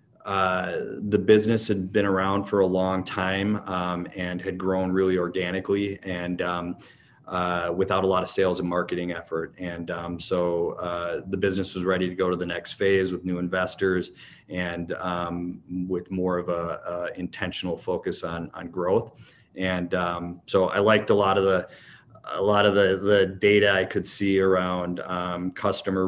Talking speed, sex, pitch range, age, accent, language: 175 wpm, male, 90-95 Hz, 30-49, American, English